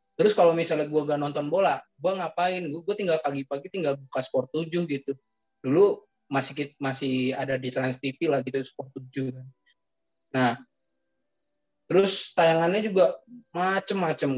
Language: Indonesian